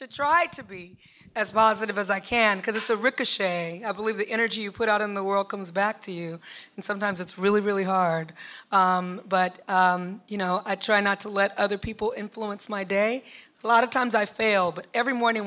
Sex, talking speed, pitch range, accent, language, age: female, 220 wpm, 200-270 Hz, American, English, 30-49